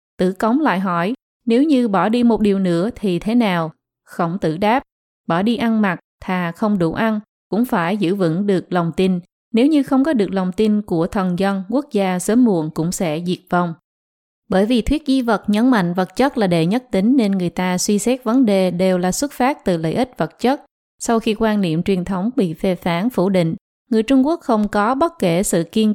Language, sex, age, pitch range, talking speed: Vietnamese, female, 20-39, 180-235 Hz, 230 wpm